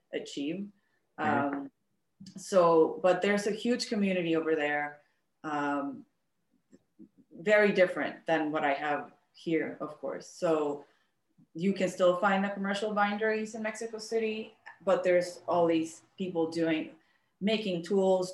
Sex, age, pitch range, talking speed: female, 30-49, 155-185 Hz, 130 wpm